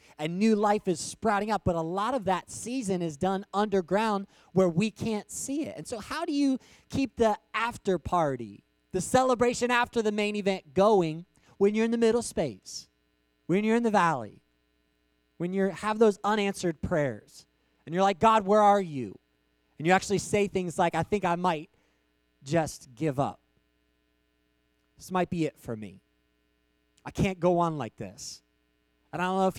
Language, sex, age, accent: English, male, 30-49, American